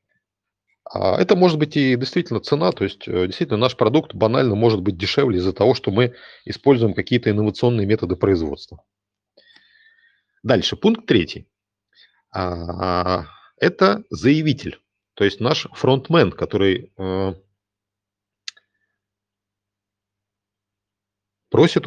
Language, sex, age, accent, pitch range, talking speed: Russian, male, 40-59, native, 100-130 Hz, 95 wpm